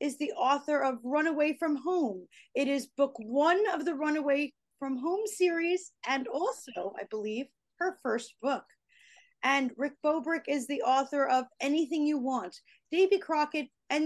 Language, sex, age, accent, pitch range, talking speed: English, female, 40-59, American, 250-335 Hz, 160 wpm